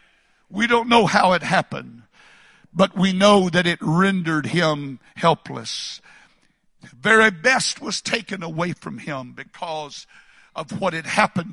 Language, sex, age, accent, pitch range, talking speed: English, male, 60-79, American, 150-200 Hz, 135 wpm